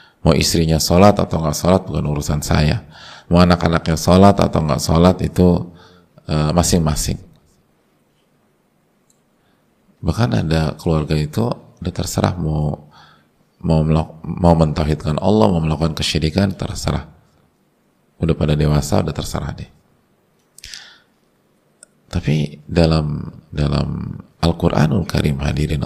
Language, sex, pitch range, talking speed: Indonesian, male, 75-95 Hz, 105 wpm